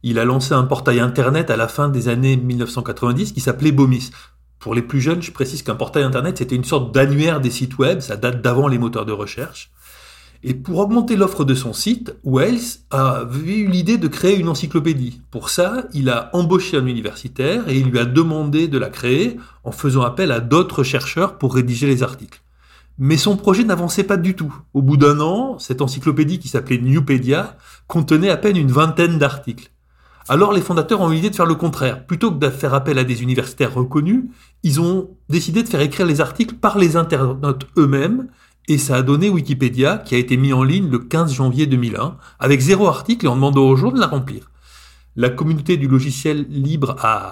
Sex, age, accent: male, 30-49, French